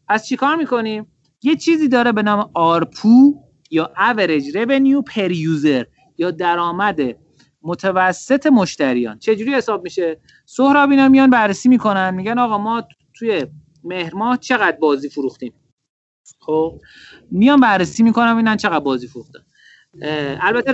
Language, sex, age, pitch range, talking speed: Persian, male, 30-49, 150-220 Hz, 125 wpm